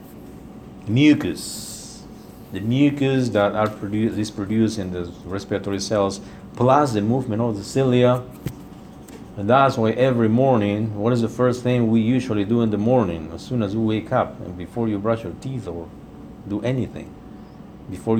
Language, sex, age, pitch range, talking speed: English, male, 50-69, 100-125 Hz, 160 wpm